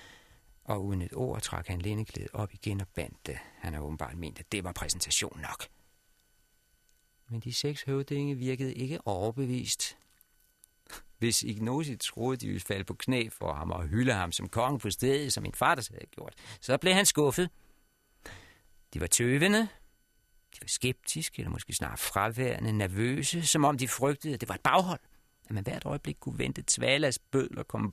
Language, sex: Danish, male